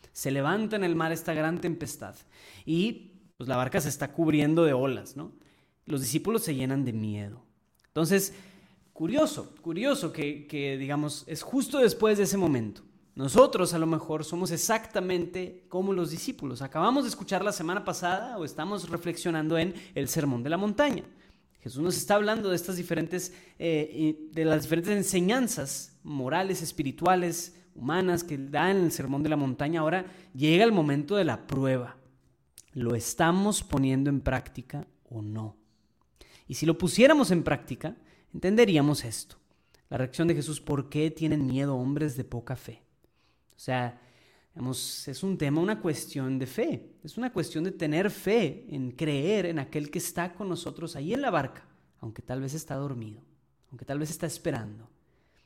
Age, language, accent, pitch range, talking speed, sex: 20-39, Spanish, Mexican, 135-180 Hz, 165 wpm, male